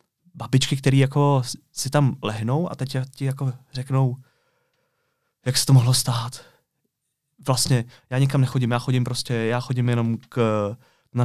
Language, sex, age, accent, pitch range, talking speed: Czech, male, 20-39, native, 115-130 Hz, 150 wpm